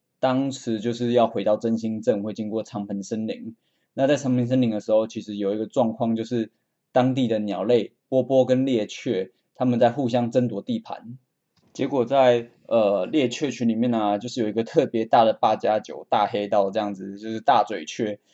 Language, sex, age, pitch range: Chinese, male, 20-39, 110-130 Hz